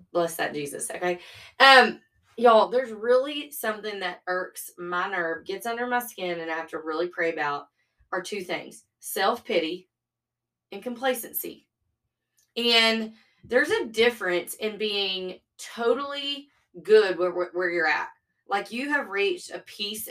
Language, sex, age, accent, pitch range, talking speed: English, female, 20-39, American, 175-230 Hz, 145 wpm